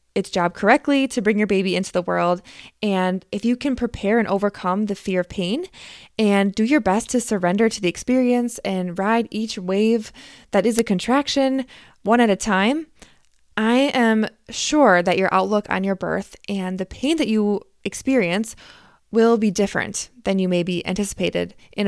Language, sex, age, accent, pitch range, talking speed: English, female, 20-39, American, 190-240 Hz, 180 wpm